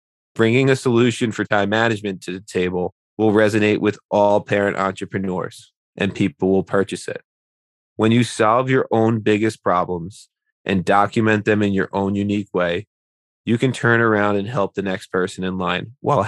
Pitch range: 95-110 Hz